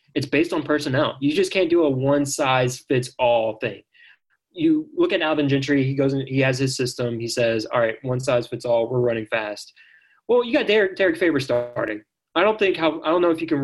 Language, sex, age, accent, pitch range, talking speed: English, male, 20-39, American, 120-155 Hz, 240 wpm